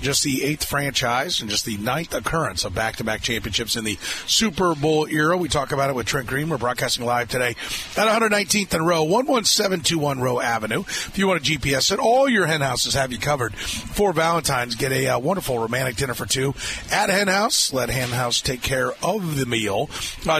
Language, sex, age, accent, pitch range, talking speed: English, male, 30-49, American, 120-170 Hz, 205 wpm